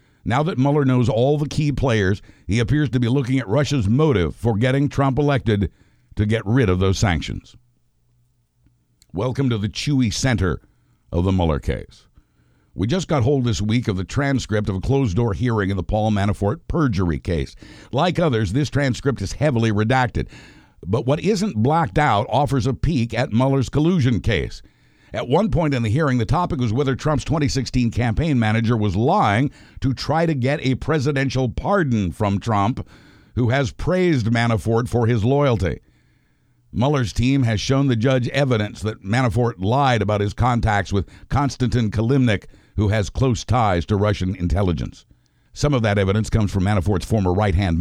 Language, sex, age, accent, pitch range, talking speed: English, male, 60-79, American, 100-135 Hz, 175 wpm